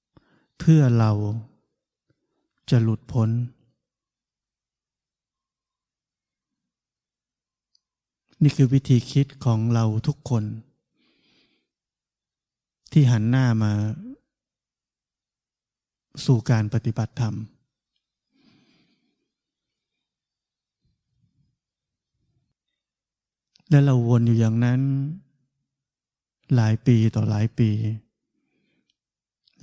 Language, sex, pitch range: Thai, male, 115-135 Hz